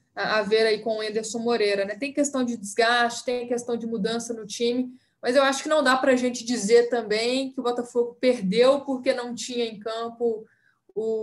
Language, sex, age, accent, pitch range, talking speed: Portuguese, female, 20-39, Brazilian, 220-245 Hz, 210 wpm